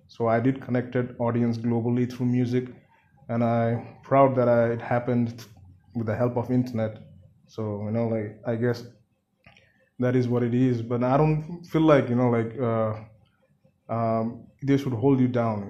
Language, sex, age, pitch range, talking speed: Hindi, male, 20-39, 115-125 Hz, 170 wpm